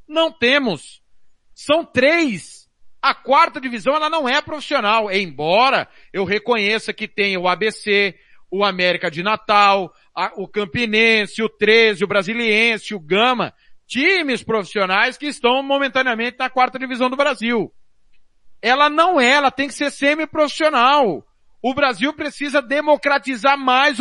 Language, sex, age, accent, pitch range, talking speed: Portuguese, male, 40-59, Brazilian, 225-285 Hz, 135 wpm